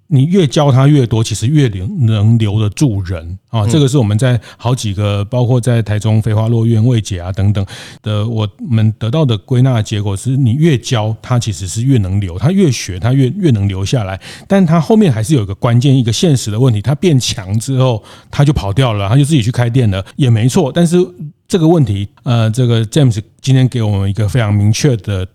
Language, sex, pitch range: Chinese, male, 110-135 Hz